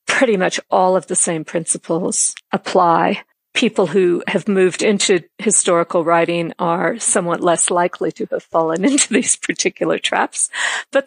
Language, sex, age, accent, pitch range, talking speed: English, female, 50-69, American, 170-190 Hz, 145 wpm